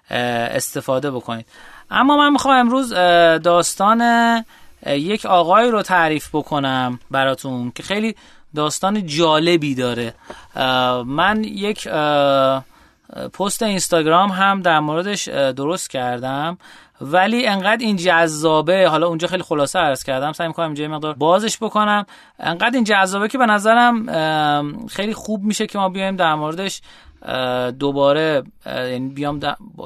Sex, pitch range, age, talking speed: male, 140-205 Hz, 30-49, 120 wpm